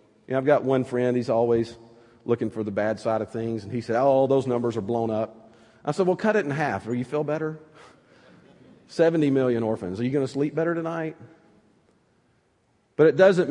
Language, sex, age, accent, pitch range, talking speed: English, male, 50-69, American, 120-150 Hz, 215 wpm